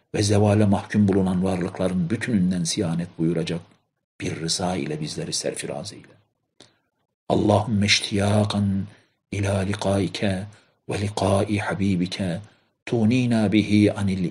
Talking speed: 100 wpm